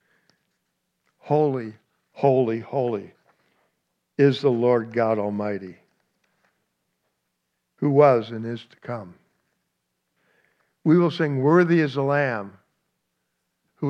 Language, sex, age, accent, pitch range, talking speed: English, male, 60-79, American, 110-140 Hz, 95 wpm